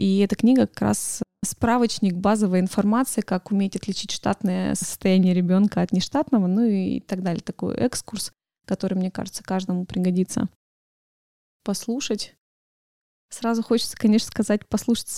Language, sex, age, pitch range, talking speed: Russian, female, 20-39, 195-235 Hz, 130 wpm